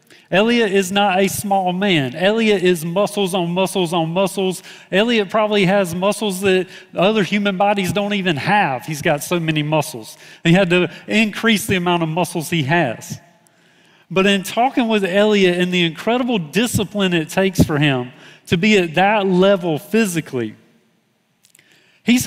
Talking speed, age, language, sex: 160 wpm, 40-59, English, male